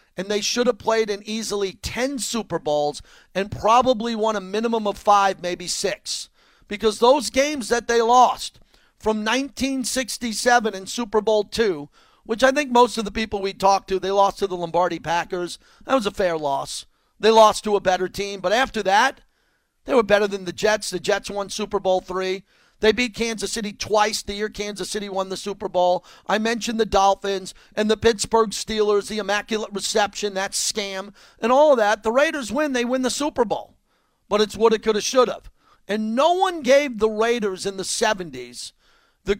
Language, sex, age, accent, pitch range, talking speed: English, male, 40-59, American, 195-230 Hz, 195 wpm